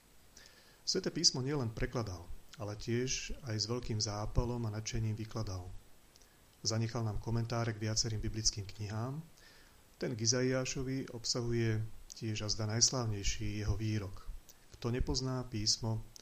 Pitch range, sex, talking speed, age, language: 105-120 Hz, male, 120 wpm, 40-59, Slovak